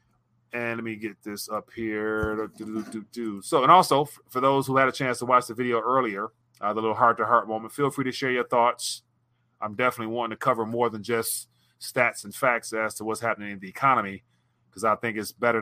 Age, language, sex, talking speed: 30-49, English, male, 230 wpm